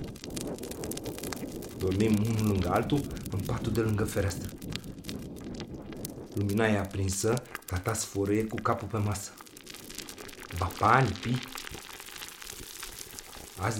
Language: Romanian